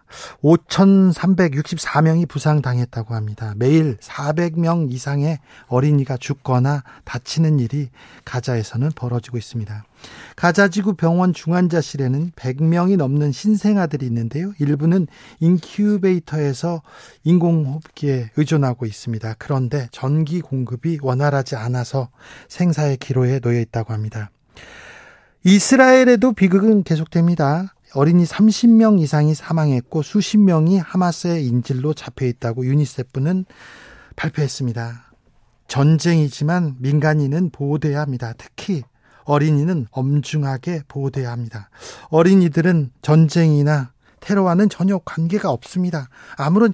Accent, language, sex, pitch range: native, Korean, male, 130-175 Hz